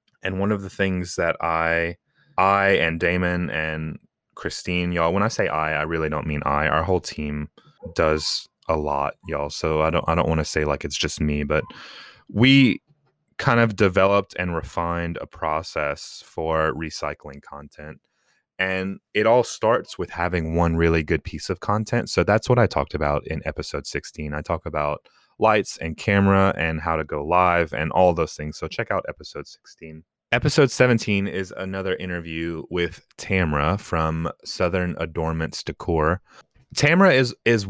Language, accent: English, American